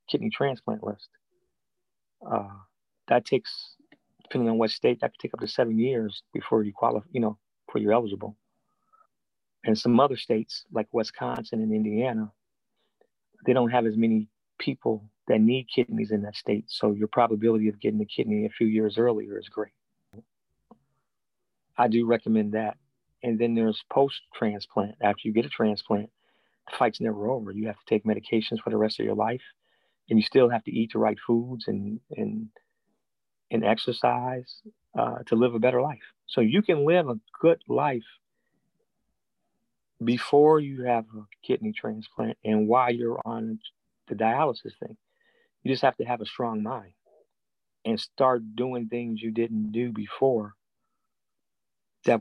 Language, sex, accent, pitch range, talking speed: English, male, American, 110-130 Hz, 165 wpm